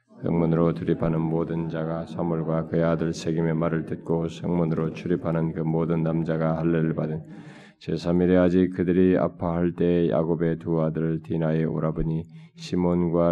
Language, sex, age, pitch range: Korean, male, 20-39, 85-90 Hz